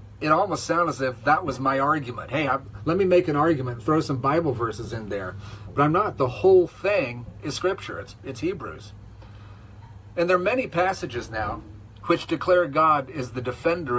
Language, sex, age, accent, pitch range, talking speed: English, male, 40-59, American, 105-160 Hz, 195 wpm